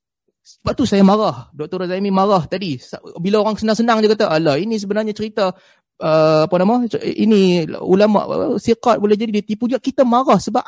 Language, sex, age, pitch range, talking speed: Malay, male, 20-39, 180-240 Hz, 170 wpm